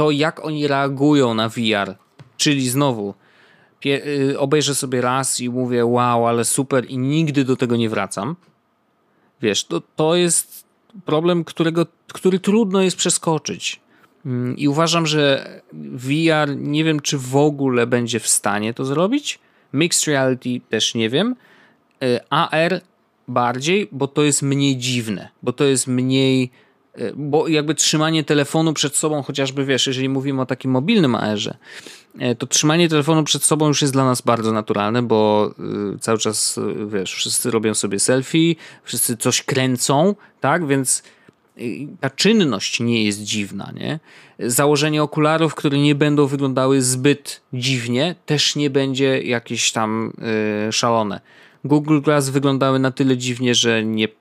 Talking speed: 140 wpm